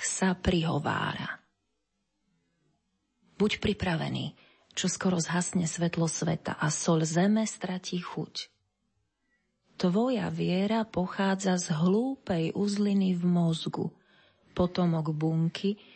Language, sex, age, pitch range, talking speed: Slovak, female, 30-49, 170-195 Hz, 90 wpm